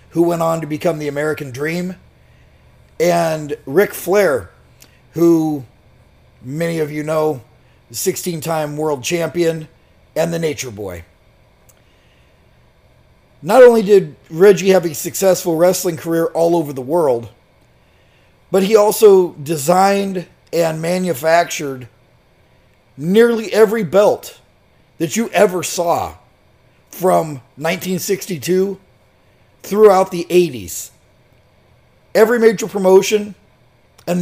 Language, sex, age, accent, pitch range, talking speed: English, male, 40-59, American, 125-190 Hz, 105 wpm